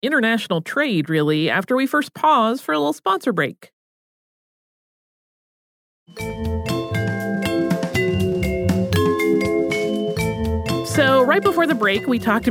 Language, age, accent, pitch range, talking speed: English, 30-49, American, 165-230 Hz, 90 wpm